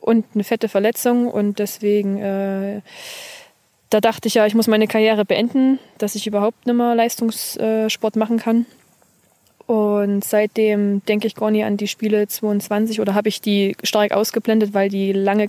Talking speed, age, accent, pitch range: 165 wpm, 20-39, German, 205-225 Hz